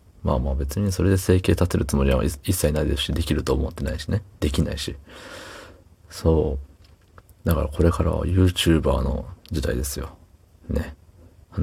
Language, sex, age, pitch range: Japanese, male, 40-59, 75-90 Hz